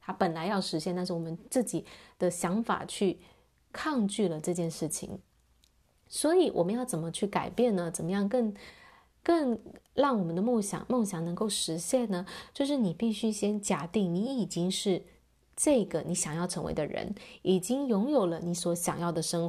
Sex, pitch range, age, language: female, 175-230 Hz, 20-39, Chinese